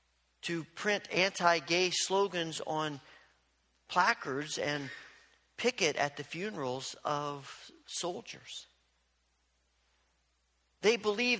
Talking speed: 80 wpm